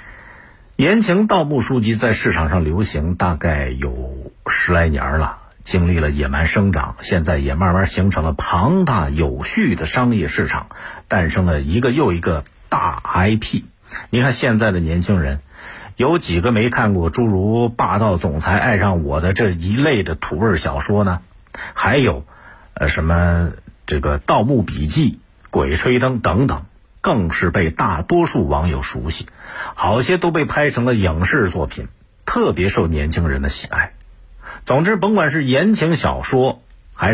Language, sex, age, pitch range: Chinese, male, 50-69, 80-120 Hz